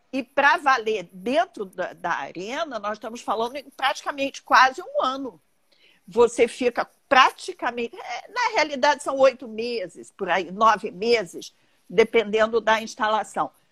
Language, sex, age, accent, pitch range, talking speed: Portuguese, female, 50-69, Brazilian, 235-320 Hz, 130 wpm